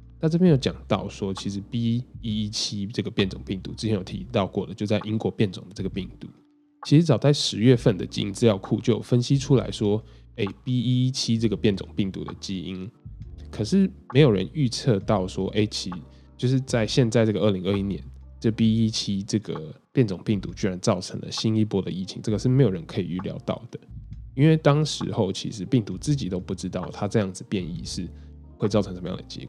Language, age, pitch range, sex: Chinese, 10-29, 95-125 Hz, male